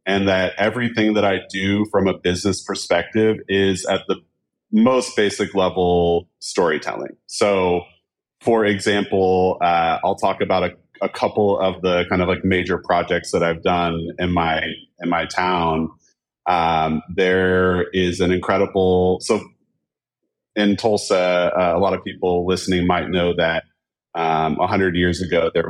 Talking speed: 150 wpm